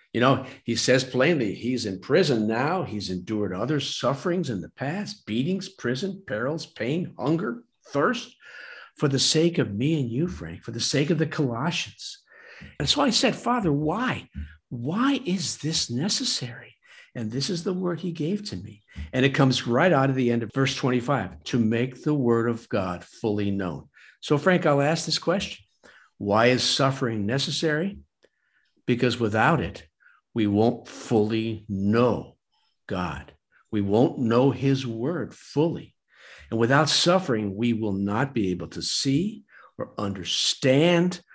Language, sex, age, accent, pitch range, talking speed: English, male, 60-79, American, 110-160 Hz, 160 wpm